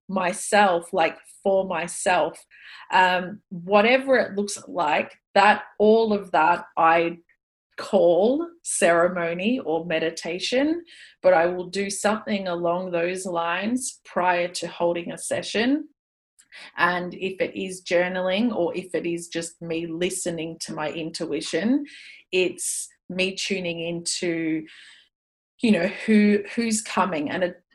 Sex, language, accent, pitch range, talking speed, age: female, English, Australian, 165-205 Hz, 125 wpm, 30-49